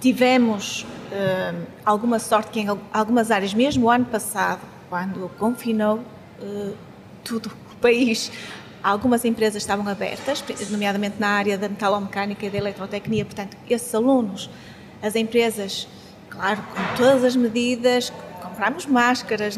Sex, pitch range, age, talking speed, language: female, 210-245 Hz, 20-39, 130 wpm, Portuguese